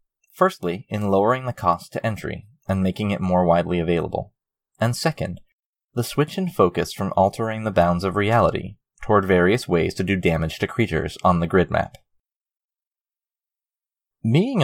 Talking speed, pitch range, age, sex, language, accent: 155 wpm, 90-130 Hz, 20-39, male, English, American